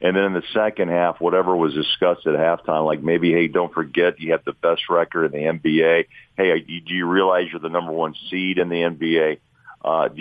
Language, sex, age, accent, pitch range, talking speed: English, male, 50-69, American, 85-100 Hz, 225 wpm